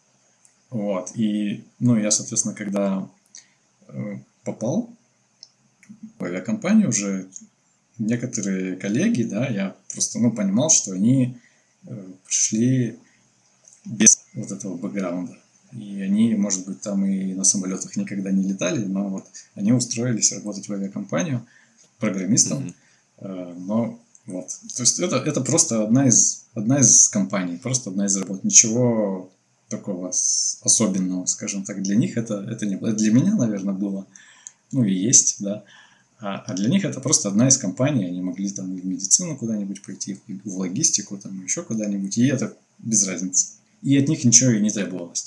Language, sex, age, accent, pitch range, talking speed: Russian, male, 20-39, native, 95-120 Hz, 150 wpm